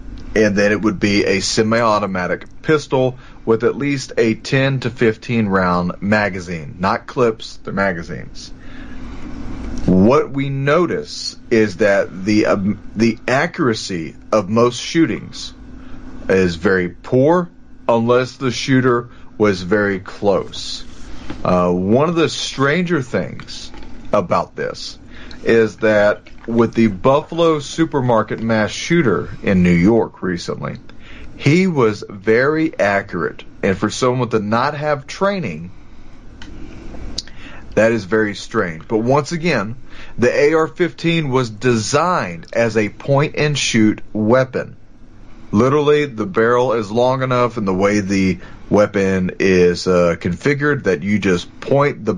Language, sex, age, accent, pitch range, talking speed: English, male, 40-59, American, 105-135 Hz, 125 wpm